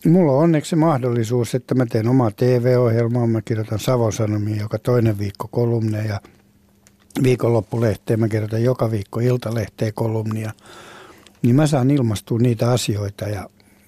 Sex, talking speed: male, 140 wpm